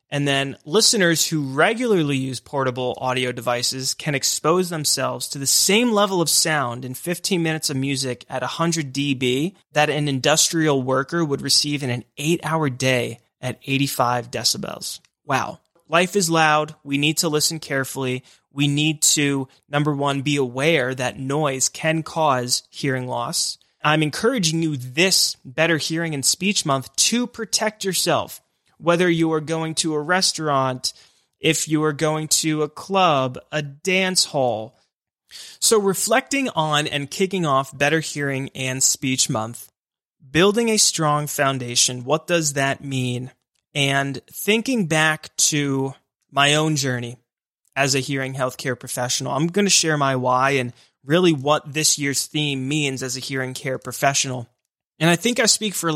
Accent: American